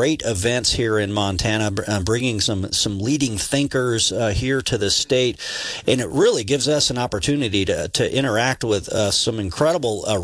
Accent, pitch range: American, 115-150 Hz